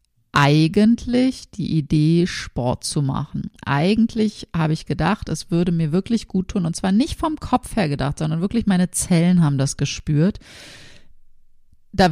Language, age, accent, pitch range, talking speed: German, 20-39, German, 150-185 Hz, 155 wpm